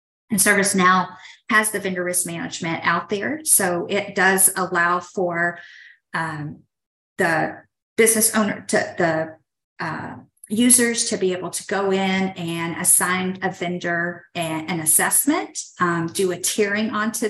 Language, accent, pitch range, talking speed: English, American, 175-210 Hz, 135 wpm